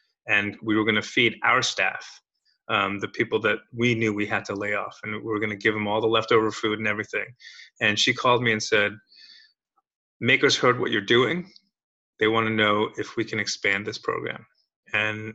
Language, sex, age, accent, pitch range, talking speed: English, male, 30-49, American, 110-130 Hz, 205 wpm